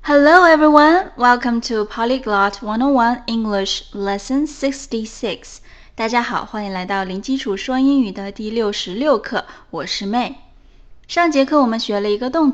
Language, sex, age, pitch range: Chinese, female, 20-39, 200-275 Hz